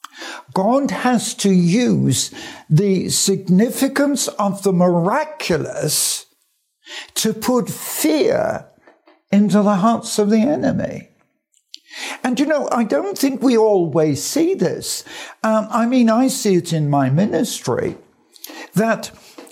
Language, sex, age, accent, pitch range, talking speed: English, male, 60-79, British, 160-245 Hz, 115 wpm